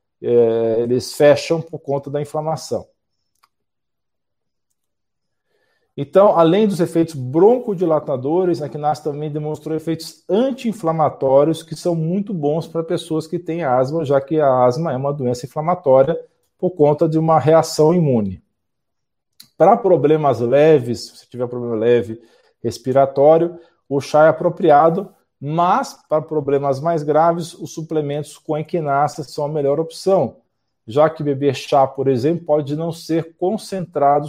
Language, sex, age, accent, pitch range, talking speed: Portuguese, male, 50-69, Brazilian, 135-165 Hz, 130 wpm